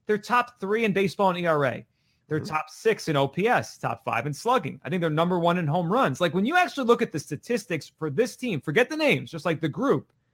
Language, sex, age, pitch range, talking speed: English, male, 30-49, 155-230 Hz, 245 wpm